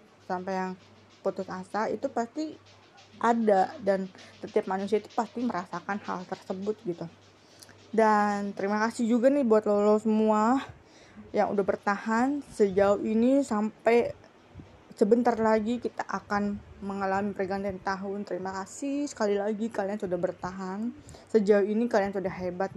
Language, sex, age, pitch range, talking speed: Indonesian, female, 20-39, 190-220 Hz, 130 wpm